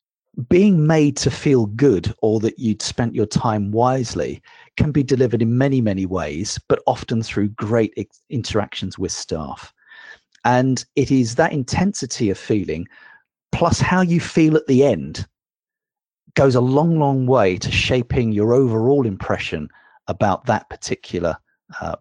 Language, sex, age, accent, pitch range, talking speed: English, male, 40-59, British, 105-140 Hz, 145 wpm